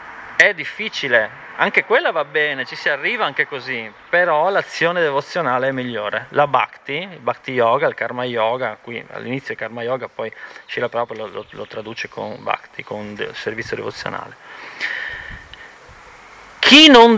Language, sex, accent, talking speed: Italian, male, native, 150 wpm